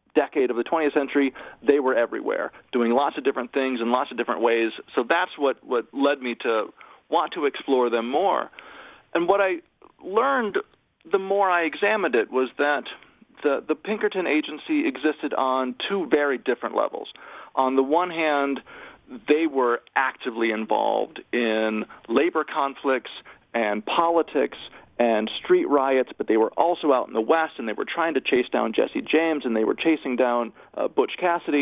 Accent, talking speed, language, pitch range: American, 175 wpm, English, 130-170 Hz